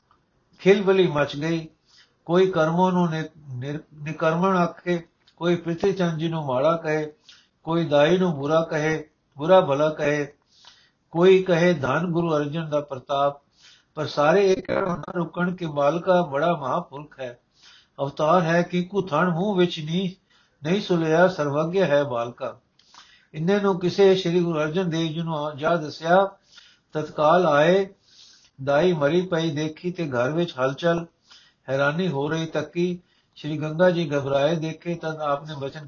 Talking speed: 140 wpm